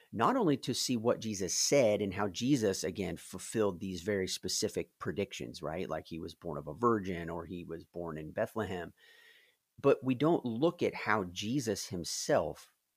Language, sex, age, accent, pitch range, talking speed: English, male, 40-59, American, 90-115 Hz, 175 wpm